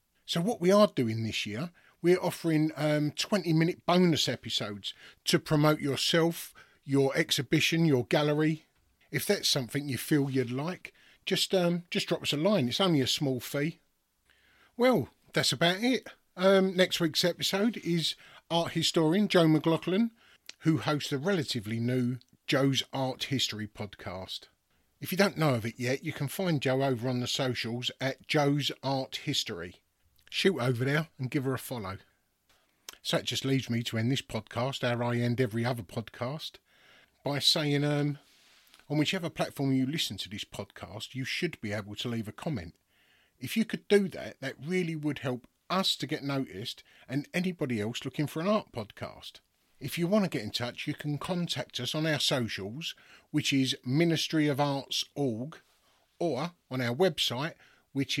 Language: English